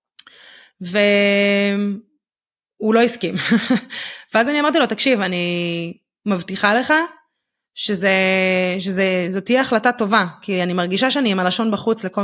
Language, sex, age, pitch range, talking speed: Hebrew, female, 20-39, 185-225 Hz, 115 wpm